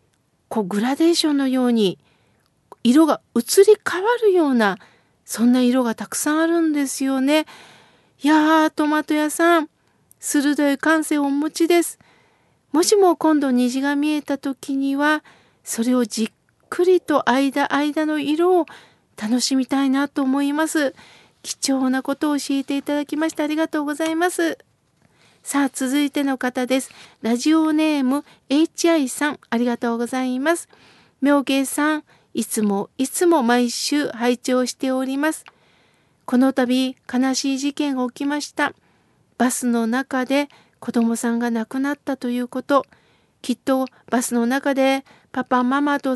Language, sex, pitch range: Japanese, female, 255-300 Hz